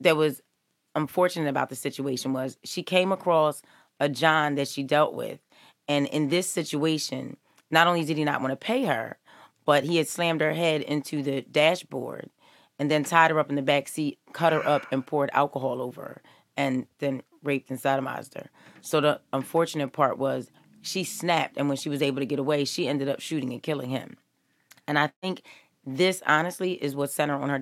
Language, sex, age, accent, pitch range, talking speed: English, female, 30-49, American, 140-165 Hz, 205 wpm